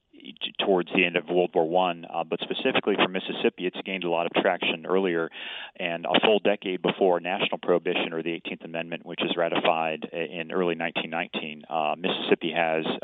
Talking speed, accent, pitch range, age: 180 wpm, American, 80-90 Hz, 30-49